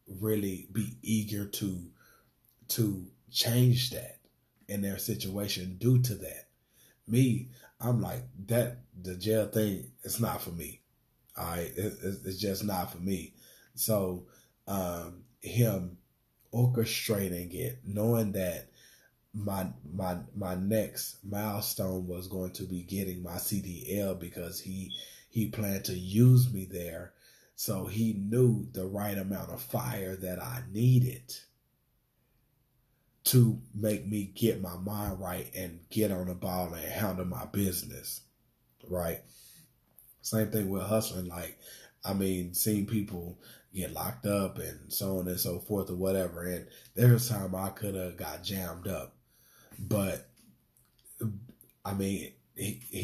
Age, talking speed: 30-49, 135 wpm